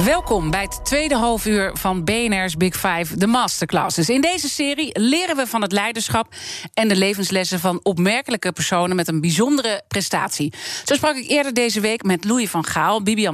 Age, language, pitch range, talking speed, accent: 40-59, Dutch, 180-235 Hz, 180 wpm, Dutch